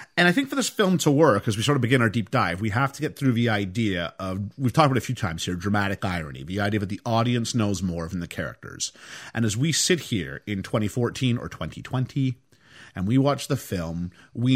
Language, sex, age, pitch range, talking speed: English, male, 40-59, 105-145 Hz, 245 wpm